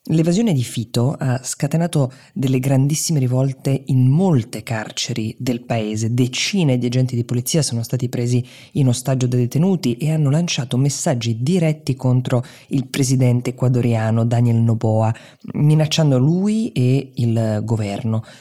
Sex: female